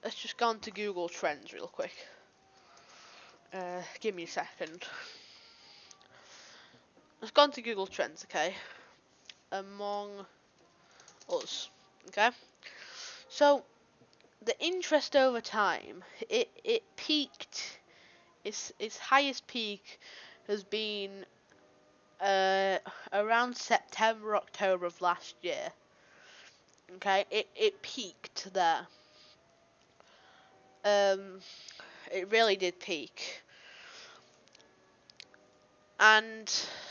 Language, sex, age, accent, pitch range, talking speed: English, female, 10-29, British, 185-250 Hz, 90 wpm